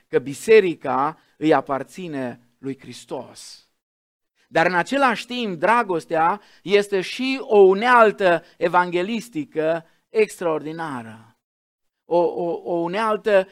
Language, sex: Romanian, male